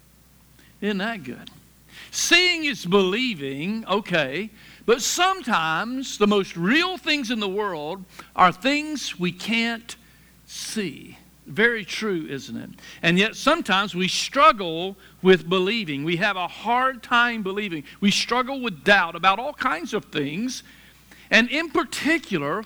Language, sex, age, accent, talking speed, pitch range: English, male, 60-79, American, 130 wpm, 180-245 Hz